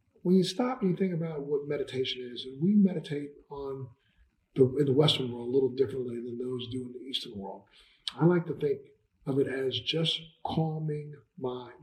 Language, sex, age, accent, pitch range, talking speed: English, male, 50-69, American, 130-160 Hz, 200 wpm